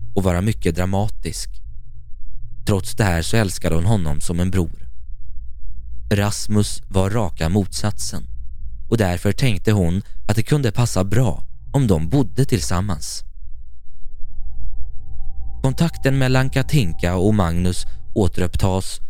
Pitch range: 80-110 Hz